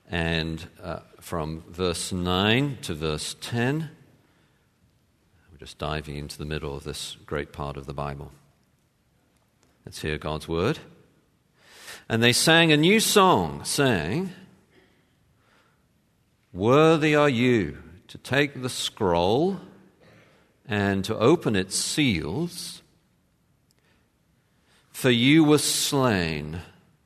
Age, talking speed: 50-69, 105 wpm